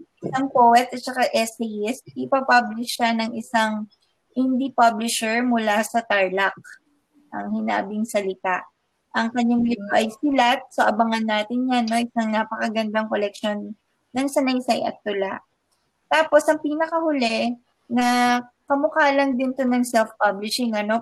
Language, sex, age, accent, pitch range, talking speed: Filipino, female, 20-39, native, 220-260 Hz, 125 wpm